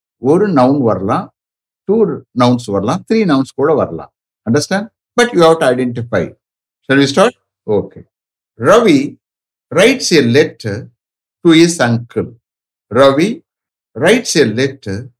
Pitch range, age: 120-165 Hz, 60-79